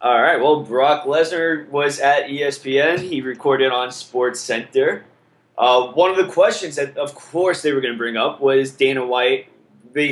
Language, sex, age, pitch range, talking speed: English, male, 20-39, 135-165 Hz, 185 wpm